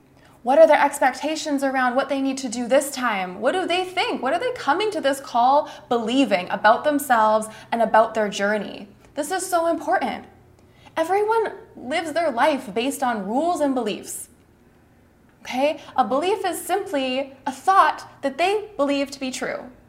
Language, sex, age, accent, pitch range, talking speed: English, female, 20-39, American, 240-320 Hz, 170 wpm